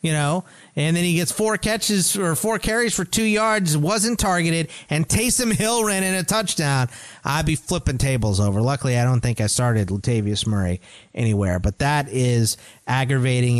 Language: English